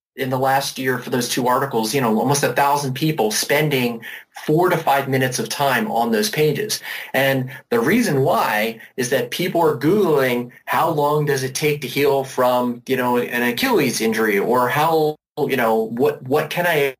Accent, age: American, 30-49